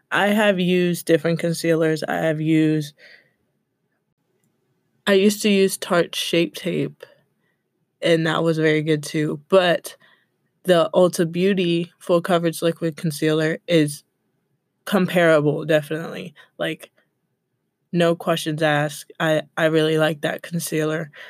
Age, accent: 20-39, American